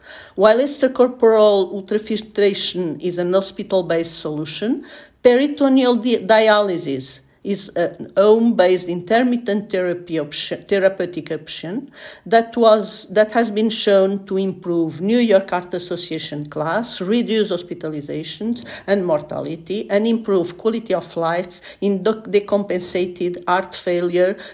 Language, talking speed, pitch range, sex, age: Portuguese, 105 wpm, 175-215 Hz, female, 50-69